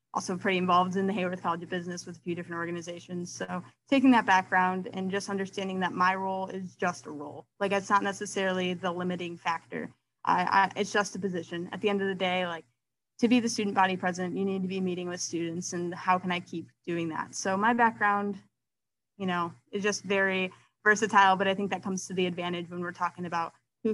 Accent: American